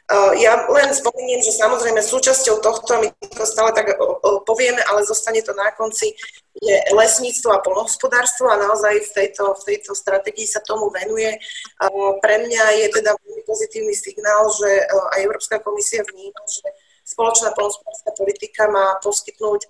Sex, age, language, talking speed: female, 20-39, Slovak, 150 wpm